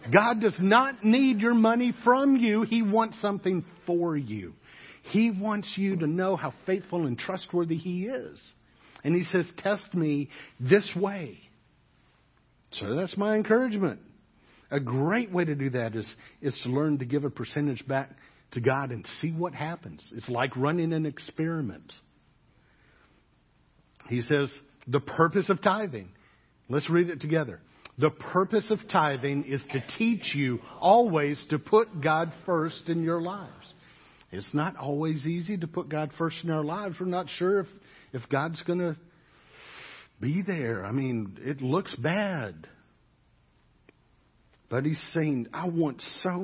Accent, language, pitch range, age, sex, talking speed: American, English, 135-185 Hz, 50-69, male, 155 wpm